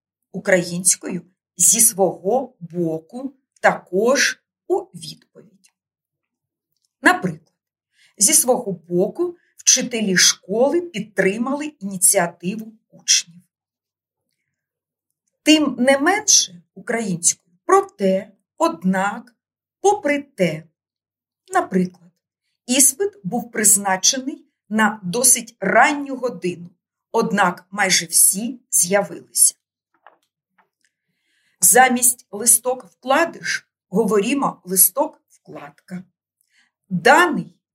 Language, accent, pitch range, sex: Ukrainian, native, 180-255 Hz, female